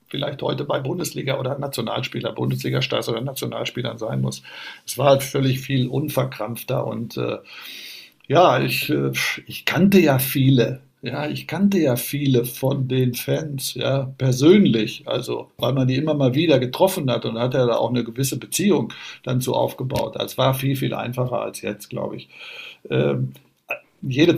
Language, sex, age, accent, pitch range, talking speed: German, male, 60-79, German, 120-140 Hz, 165 wpm